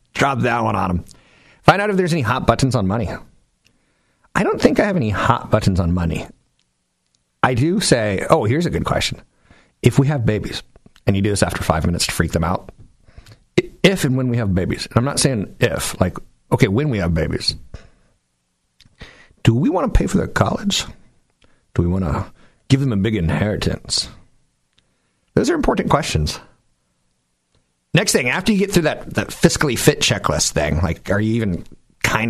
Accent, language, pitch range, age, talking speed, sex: American, English, 80-125 Hz, 50-69, 190 wpm, male